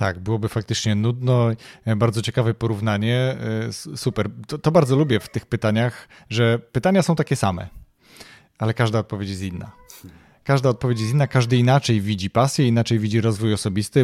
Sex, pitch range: male, 110-130 Hz